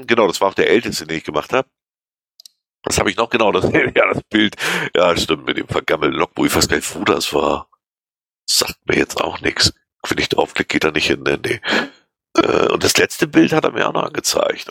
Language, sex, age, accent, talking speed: German, male, 50-69, German, 225 wpm